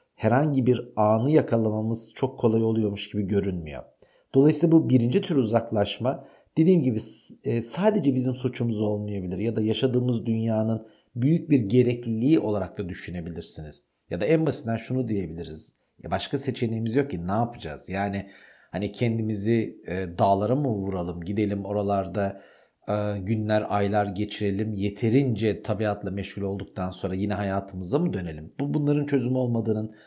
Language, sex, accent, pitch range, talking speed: Turkish, male, native, 100-130 Hz, 135 wpm